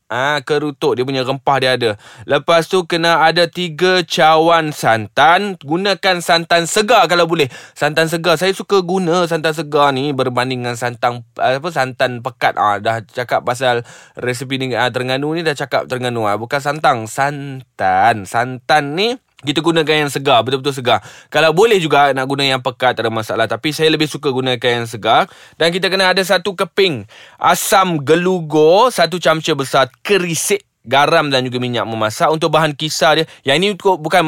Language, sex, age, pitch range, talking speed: Malay, male, 20-39, 130-170 Hz, 175 wpm